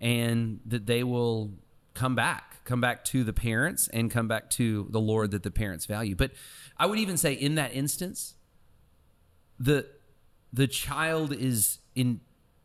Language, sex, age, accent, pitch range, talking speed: English, male, 30-49, American, 105-135 Hz, 160 wpm